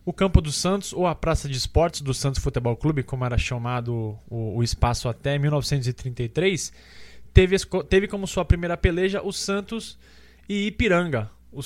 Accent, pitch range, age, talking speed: Brazilian, 130-165 Hz, 20-39, 155 wpm